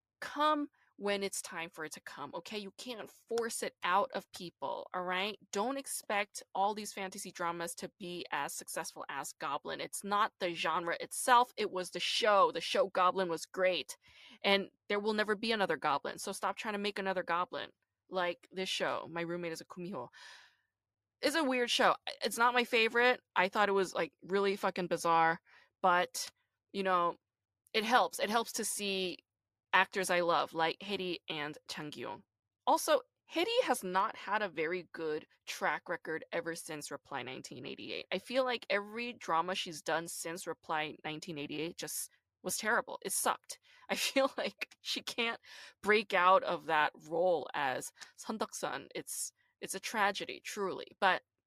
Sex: female